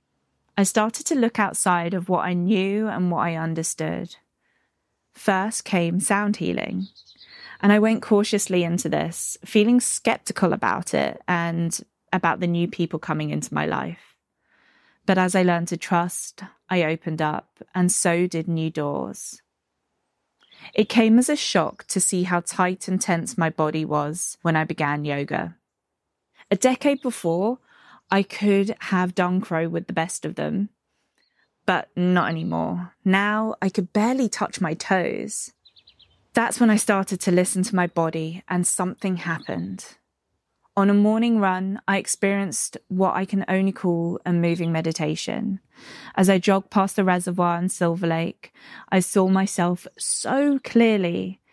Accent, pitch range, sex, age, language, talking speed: British, 170-205 Hz, female, 20-39, English, 155 wpm